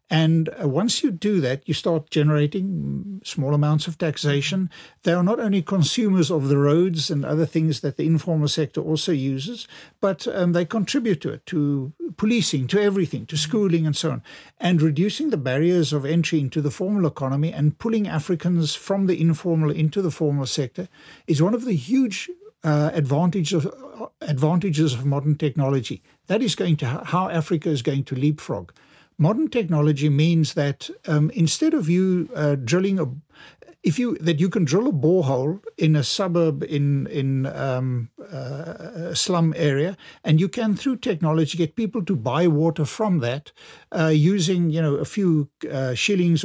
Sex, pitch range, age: male, 150-185 Hz, 60-79